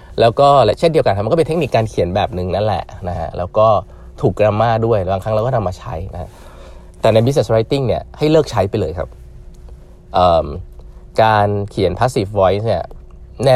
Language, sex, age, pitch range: Thai, male, 20-39, 75-125 Hz